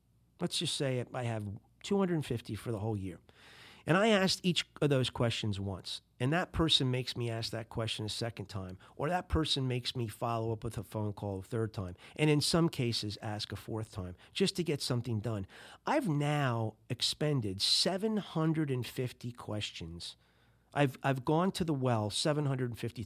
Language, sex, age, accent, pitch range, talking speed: English, male, 40-59, American, 110-160 Hz, 175 wpm